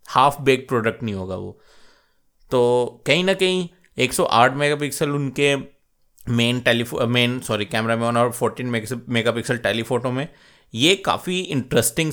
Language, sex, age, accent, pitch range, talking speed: Hindi, male, 30-49, native, 115-145 Hz, 135 wpm